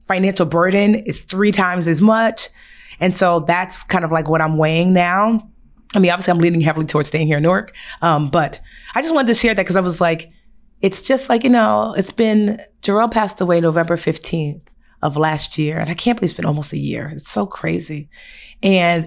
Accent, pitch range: American, 155-205 Hz